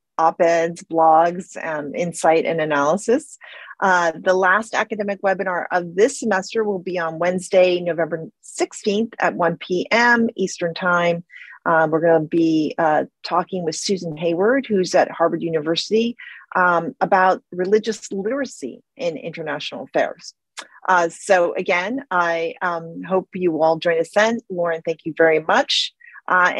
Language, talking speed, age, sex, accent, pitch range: English, 140 wpm, 40-59, female, American, 165-210 Hz